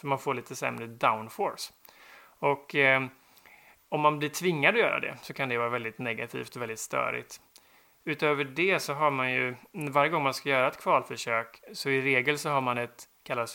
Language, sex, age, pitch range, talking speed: Swedish, male, 30-49, 120-145 Hz, 200 wpm